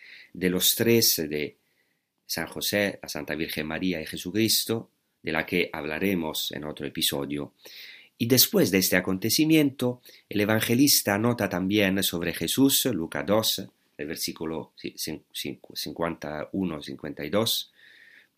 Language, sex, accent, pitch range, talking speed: Spanish, male, Italian, 80-110 Hz, 115 wpm